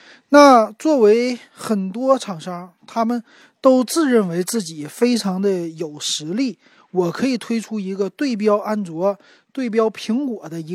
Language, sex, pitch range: Chinese, male, 170-225 Hz